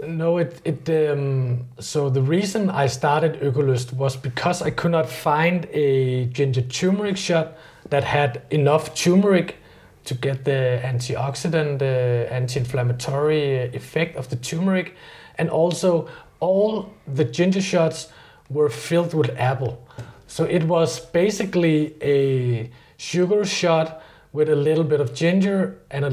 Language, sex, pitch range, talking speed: English, male, 130-165 Hz, 135 wpm